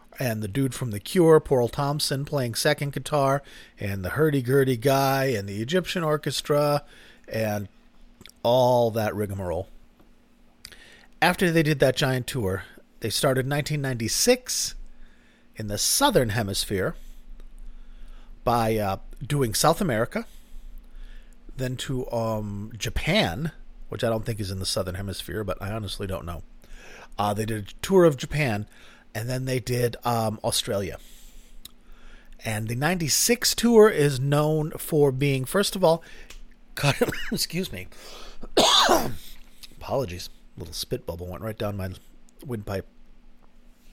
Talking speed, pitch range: 130 wpm, 105-145 Hz